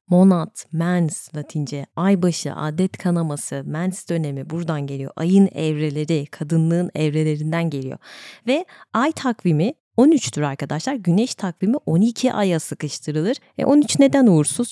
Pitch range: 150-225 Hz